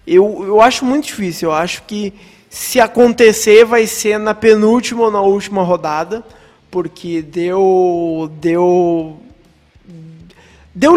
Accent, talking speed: Brazilian, 115 wpm